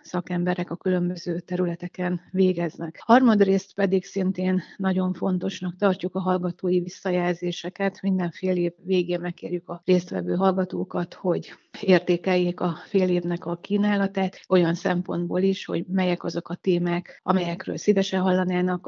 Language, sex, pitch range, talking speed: Hungarian, female, 180-190 Hz, 125 wpm